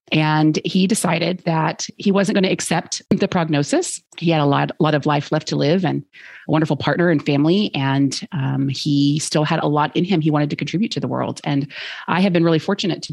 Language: English